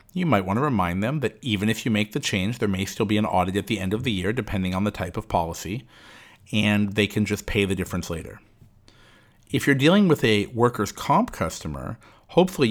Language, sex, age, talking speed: English, male, 50-69, 225 wpm